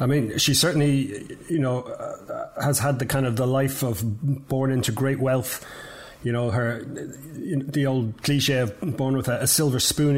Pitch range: 130-145 Hz